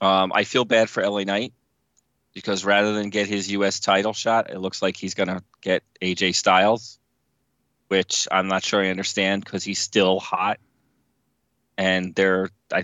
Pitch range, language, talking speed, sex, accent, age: 95-105 Hz, English, 170 wpm, male, American, 30-49